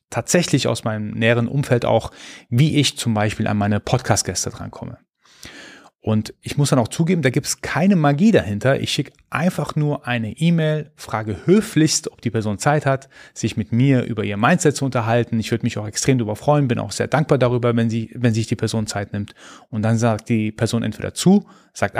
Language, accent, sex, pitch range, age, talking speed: German, German, male, 110-145 Hz, 30-49, 200 wpm